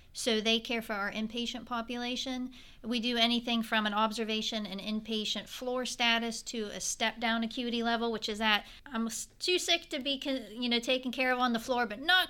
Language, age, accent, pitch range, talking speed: English, 40-59, American, 215-240 Hz, 200 wpm